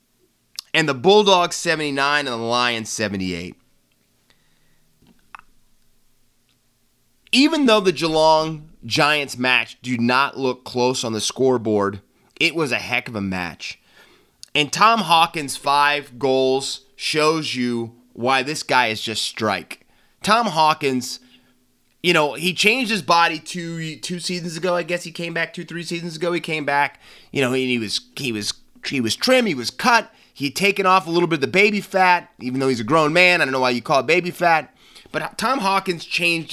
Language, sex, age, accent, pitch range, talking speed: English, male, 30-49, American, 125-175 Hz, 180 wpm